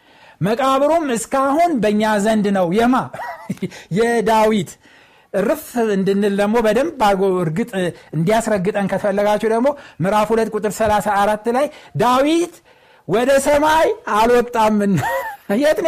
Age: 60-79